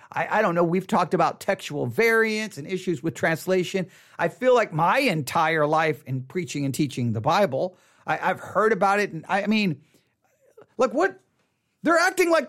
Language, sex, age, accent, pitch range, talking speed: English, male, 40-59, American, 150-235 Hz, 185 wpm